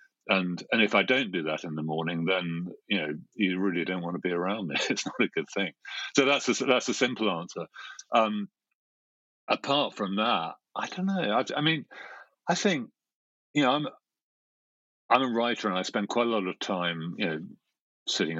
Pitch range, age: 90-105 Hz, 50-69